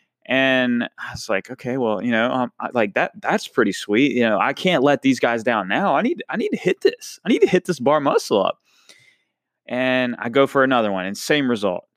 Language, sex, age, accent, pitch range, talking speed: English, male, 20-39, American, 135-220 Hz, 235 wpm